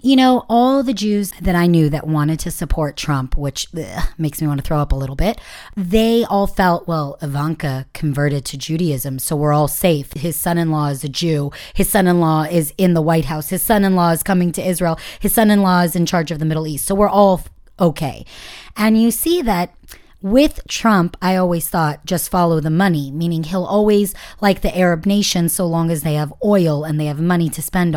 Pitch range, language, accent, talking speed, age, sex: 160-205 Hz, English, American, 210 wpm, 30-49, female